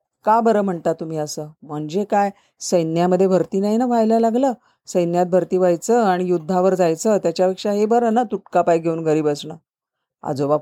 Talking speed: 165 wpm